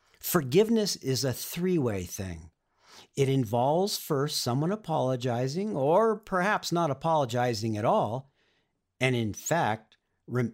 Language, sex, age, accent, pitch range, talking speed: English, male, 50-69, American, 110-165 Hz, 115 wpm